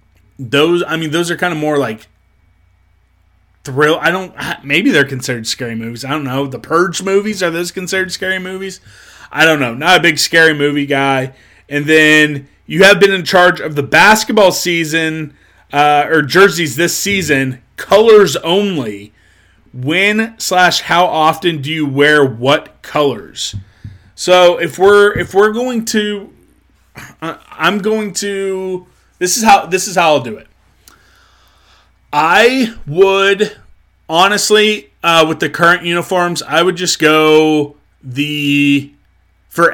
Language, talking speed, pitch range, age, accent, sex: English, 145 wpm, 135-185 Hz, 30-49, American, male